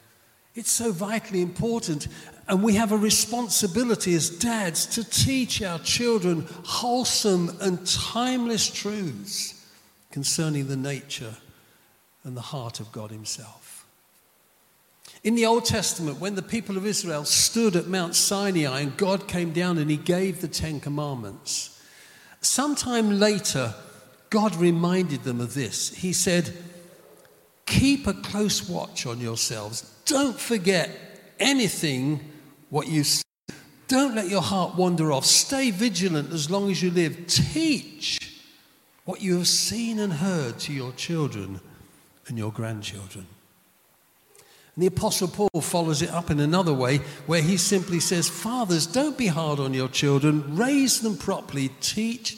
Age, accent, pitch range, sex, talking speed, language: 50-69, British, 135-200 Hz, male, 140 wpm, English